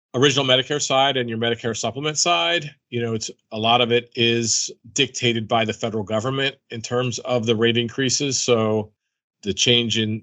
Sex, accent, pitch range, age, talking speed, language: male, American, 105-120 Hz, 40-59, 180 wpm, English